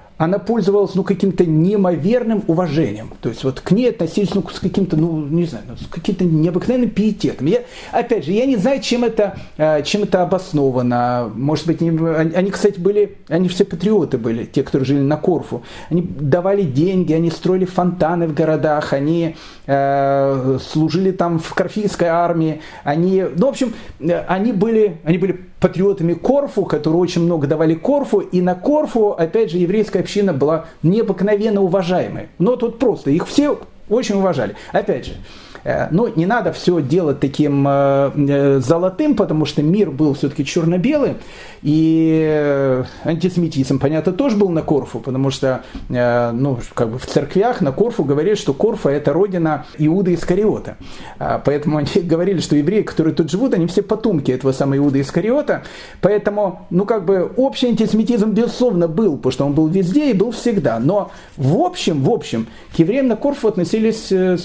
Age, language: 40-59, Russian